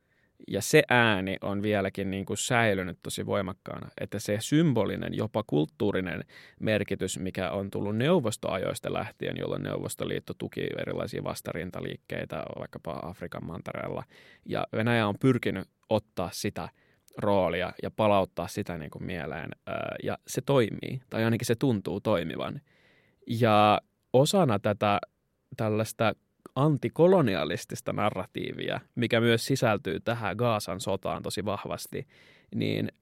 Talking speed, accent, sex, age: 120 wpm, native, male, 20-39